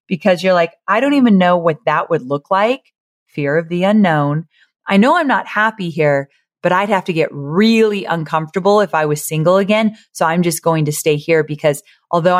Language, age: English, 30-49